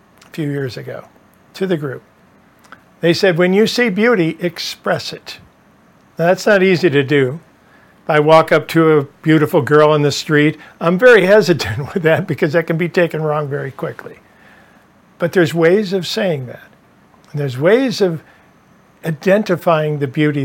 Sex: male